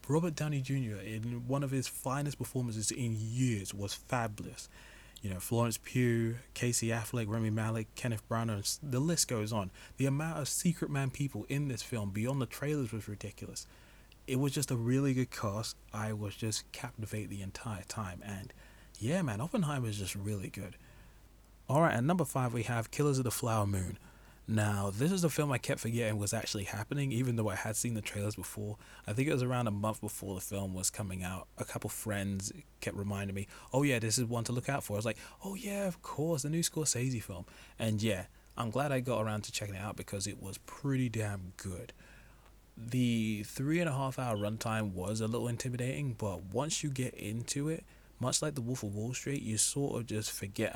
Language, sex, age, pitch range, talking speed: English, male, 20-39, 105-130 Hz, 210 wpm